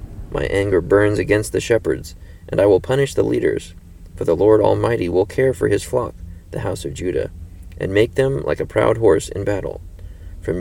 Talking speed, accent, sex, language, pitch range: 200 wpm, American, male, English, 85-120 Hz